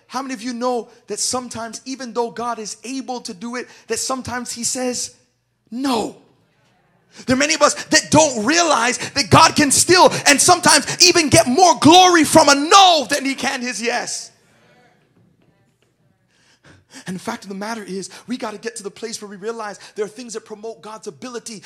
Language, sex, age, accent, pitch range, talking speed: English, male, 30-49, American, 225-275 Hz, 195 wpm